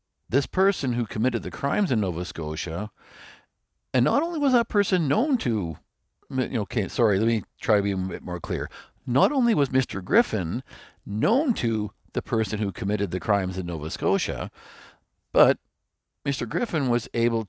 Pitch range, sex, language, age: 100-140 Hz, male, English, 50-69